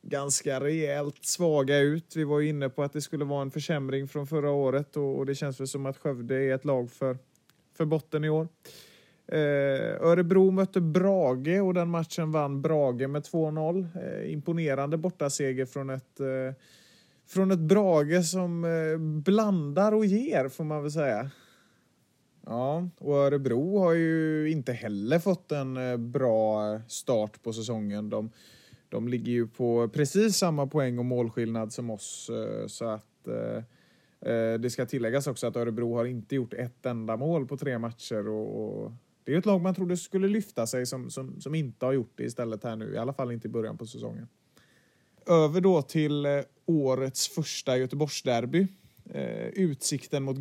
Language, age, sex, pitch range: Swedish, 30-49, male, 130-165 Hz